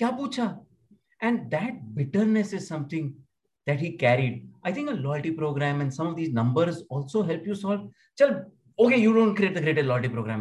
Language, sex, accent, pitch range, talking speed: English, male, Indian, 105-145 Hz, 175 wpm